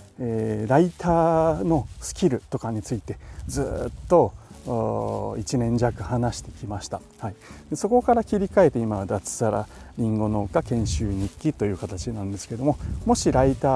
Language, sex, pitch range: Japanese, male, 105-135 Hz